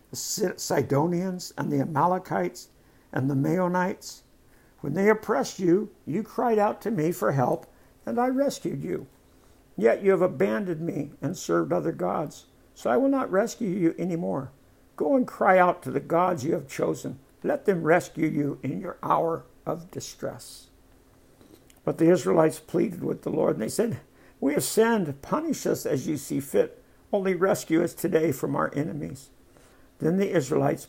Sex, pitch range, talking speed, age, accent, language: male, 140-180 Hz, 170 wpm, 60-79, American, English